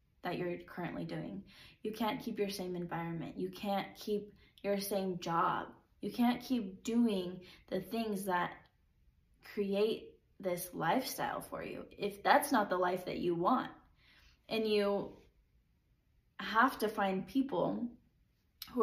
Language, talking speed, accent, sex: English, 135 wpm, American, female